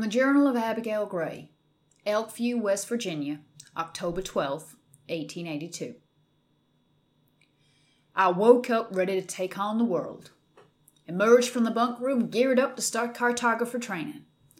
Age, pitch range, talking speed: 30-49, 185-240 Hz, 125 wpm